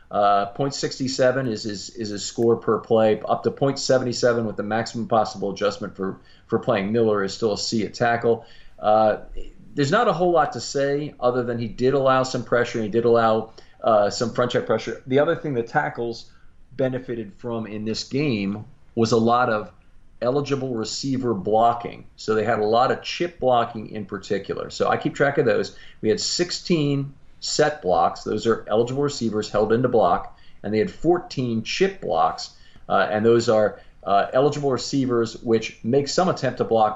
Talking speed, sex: 185 wpm, male